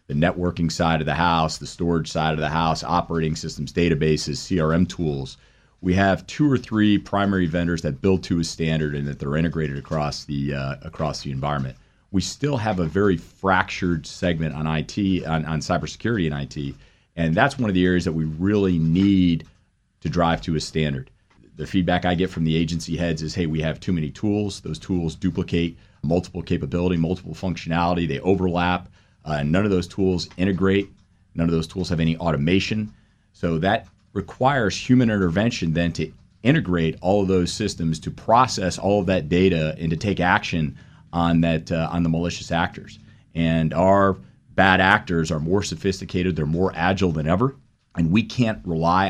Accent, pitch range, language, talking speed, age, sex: American, 80-95 Hz, English, 185 wpm, 40-59, male